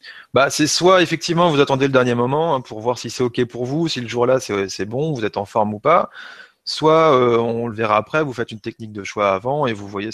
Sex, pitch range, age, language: male, 115-155 Hz, 30-49, French